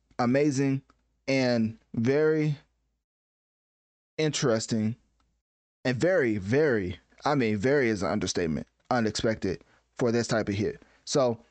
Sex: male